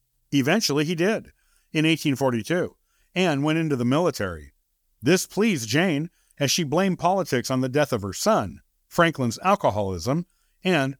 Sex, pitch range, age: male, 120-175 Hz, 50-69